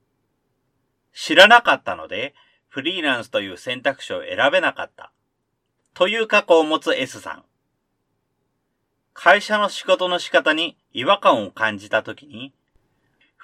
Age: 40-59